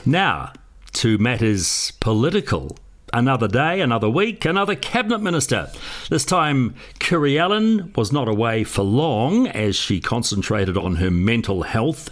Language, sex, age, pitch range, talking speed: English, male, 60-79, 100-150 Hz, 130 wpm